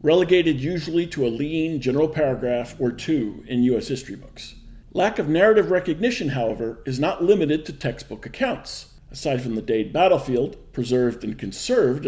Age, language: 50-69, English